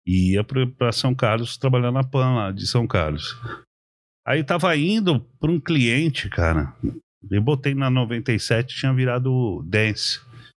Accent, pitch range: Brazilian, 105-135 Hz